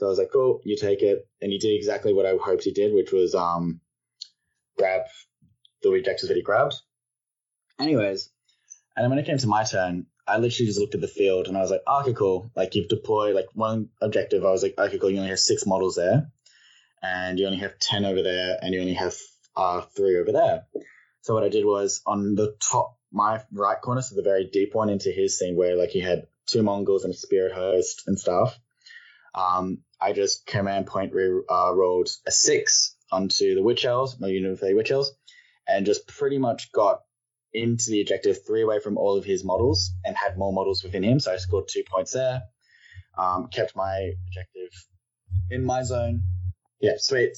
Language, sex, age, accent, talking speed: English, male, 10-29, Australian, 210 wpm